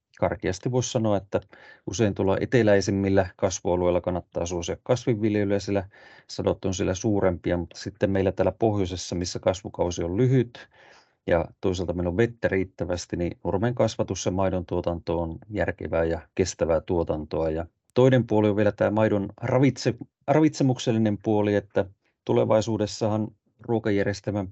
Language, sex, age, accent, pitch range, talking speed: Finnish, male, 30-49, native, 90-110 Hz, 135 wpm